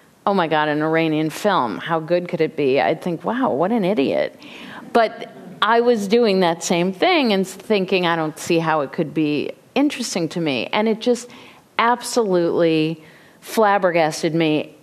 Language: English